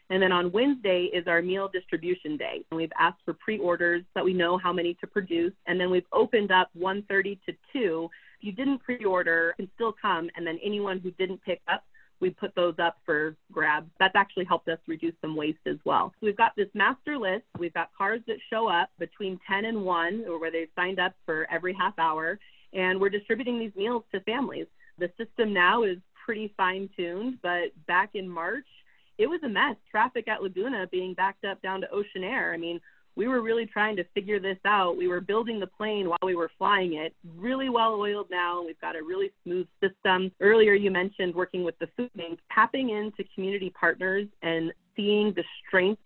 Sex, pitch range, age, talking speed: female, 175-210 Hz, 30-49, 210 wpm